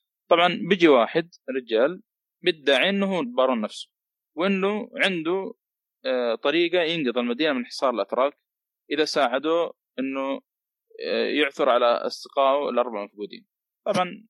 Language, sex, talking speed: Arabic, male, 110 wpm